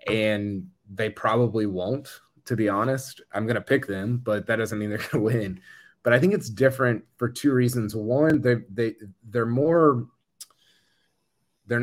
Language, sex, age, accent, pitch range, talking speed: English, male, 20-39, American, 100-125 Hz, 170 wpm